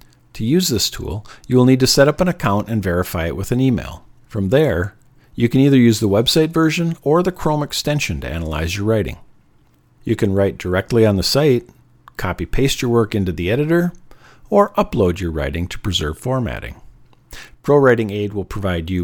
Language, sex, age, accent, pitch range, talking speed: English, male, 50-69, American, 100-140 Hz, 185 wpm